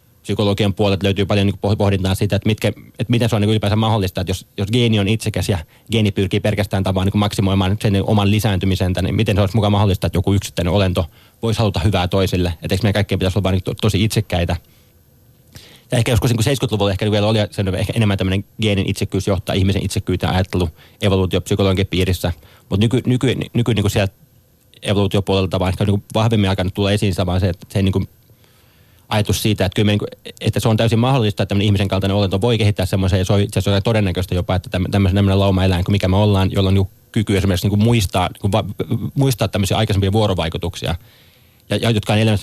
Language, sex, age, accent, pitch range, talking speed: Finnish, male, 20-39, native, 95-110 Hz, 190 wpm